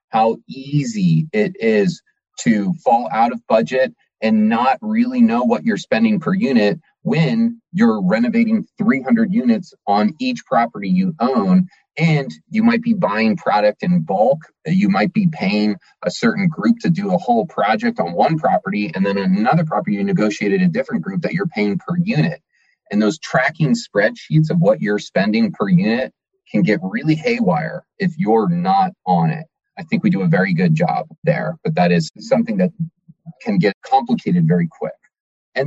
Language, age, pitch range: English, 30-49, 160-230 Hz